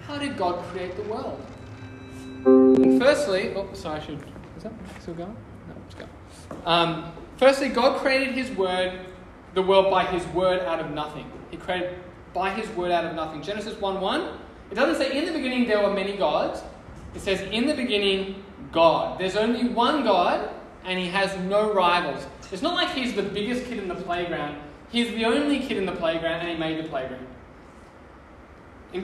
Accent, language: Australian, English